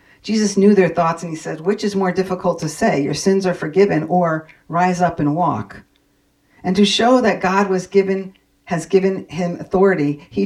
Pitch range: 145-185 Hz